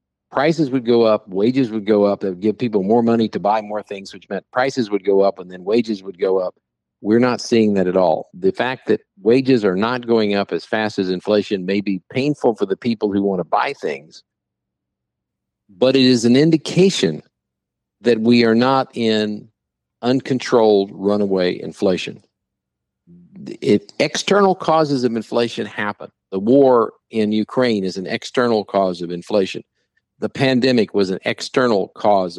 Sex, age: male, 50-69